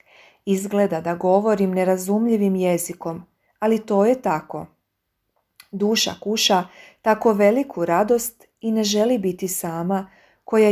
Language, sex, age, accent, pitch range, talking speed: Croatian, female, 40-59, native, 180-220 Hz, 110 wpm